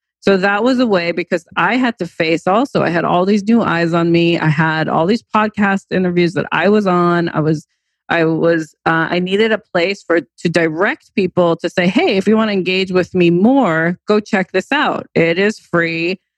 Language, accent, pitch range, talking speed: English, American, 170-210 Hz, 220 wpm